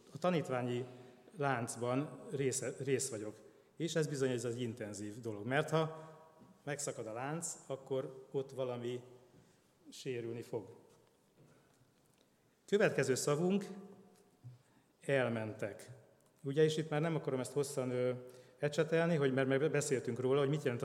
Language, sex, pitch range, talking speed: Hungarian, male, 130-170 Hz, 120 wpm